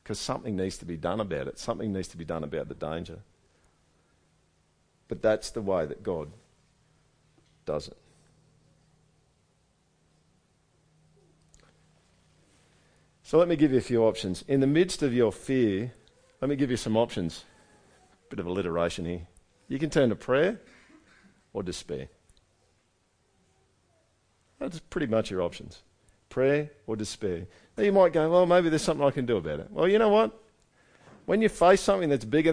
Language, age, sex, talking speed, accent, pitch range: English, 50-69, male, 155 wpm, Australian, 100-145 Hz